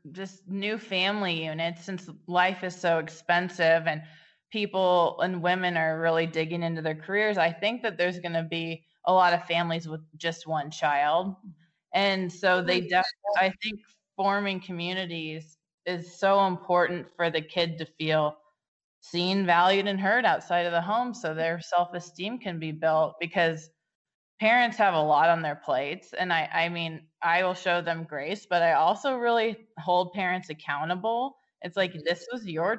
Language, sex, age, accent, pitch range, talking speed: English, female, 20-39, American, 165-200 Hz, 170 wpm